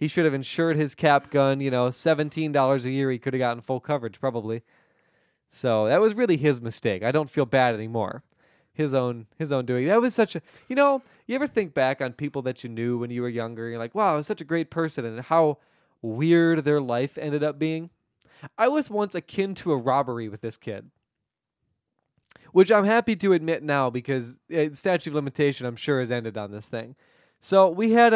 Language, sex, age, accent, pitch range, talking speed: English, male, 20-39, American, 130-185 Hz, 220 wpm